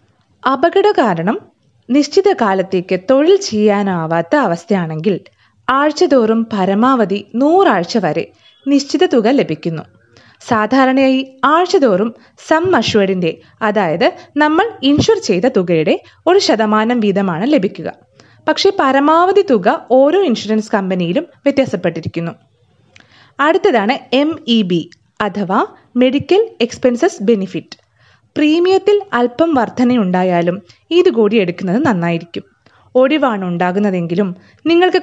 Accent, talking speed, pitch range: native, 85 wpm, 195-300 Hz